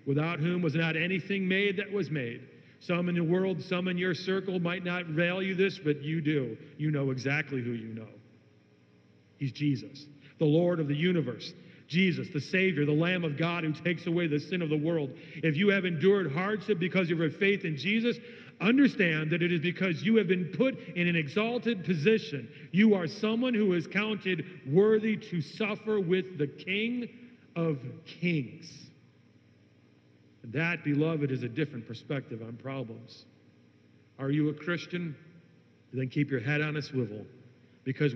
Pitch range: 125-175 Hz